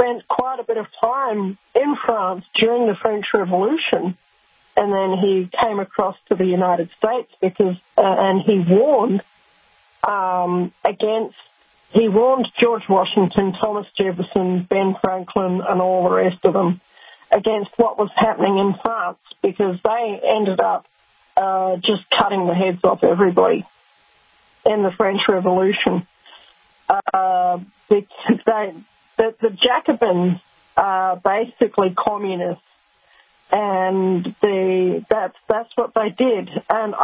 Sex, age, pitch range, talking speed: female, 40-59, 190-235 Hz, 125 wpm